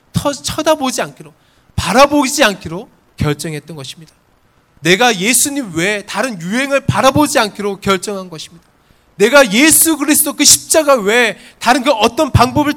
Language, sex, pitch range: Korean, male, 170-250 Hz